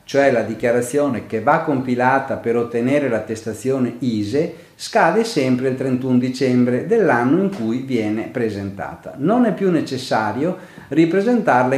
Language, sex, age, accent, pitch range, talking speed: Italian, male, 50-69, native, 115-155 Hz, 125 wpm